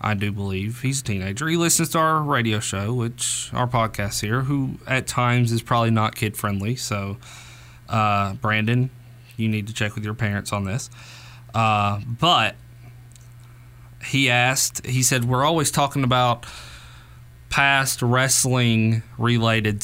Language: English